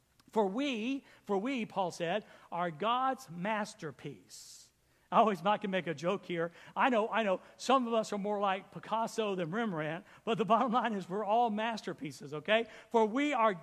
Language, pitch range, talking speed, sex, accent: English, 215-270 Hz, 185 wpm, male, American